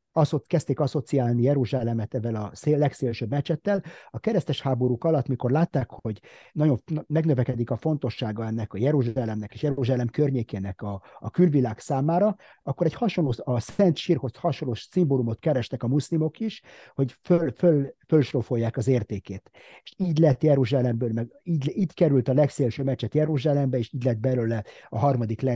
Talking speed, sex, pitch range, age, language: 155 wpm, male, 120-165 Hz, 50-69, Hungarian